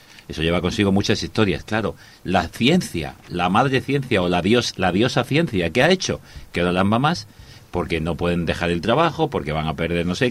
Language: Spanish